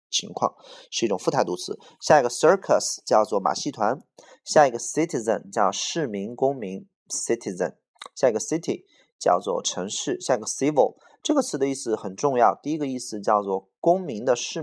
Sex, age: male, 20-39